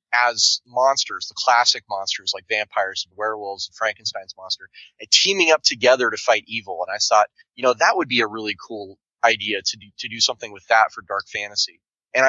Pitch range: 105-125 Hz